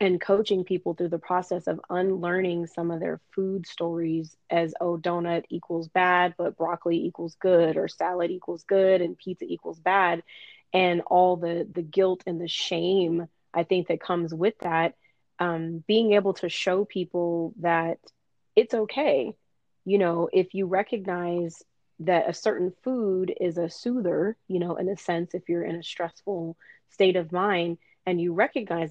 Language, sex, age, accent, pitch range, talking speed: English, female, 30-49, American, 170-195 Hz, 170 wpm